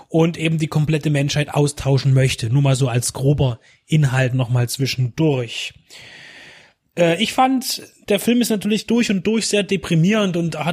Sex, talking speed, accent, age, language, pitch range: male, 170 wpm, German, 30-49, German, 145-185 Hz